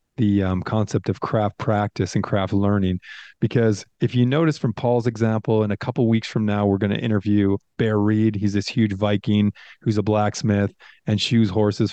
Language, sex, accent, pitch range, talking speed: English, male, American, 105-120 Hz, 195 wpm